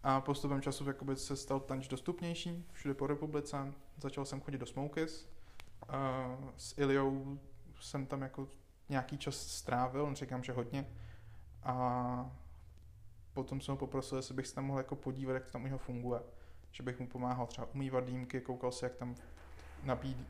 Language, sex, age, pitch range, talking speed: Czech, male, 20-39, 125-140 Hz, 165 wpm